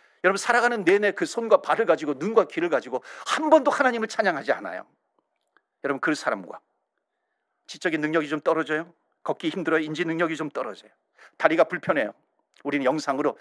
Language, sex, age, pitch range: Korean, male, 40-59, 155-235 Hz